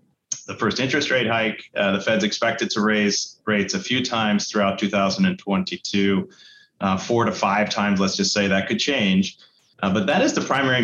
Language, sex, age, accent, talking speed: English, male, 30-49, American, 190 wpm